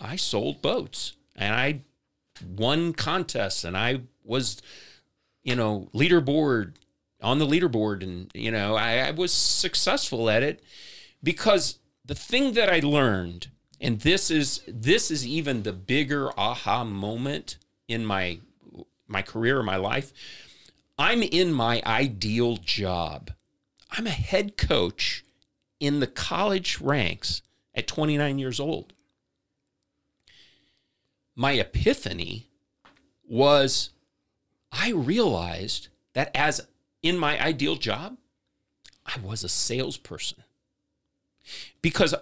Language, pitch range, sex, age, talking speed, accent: English, 110-150 Hz, male, 40-59, 115 wpm, American